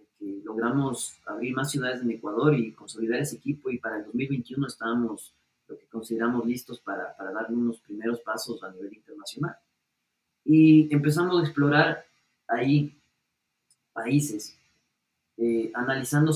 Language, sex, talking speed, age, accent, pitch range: Spanish, male, 135 wpm, 20-39, Mexican, 115-145 Hz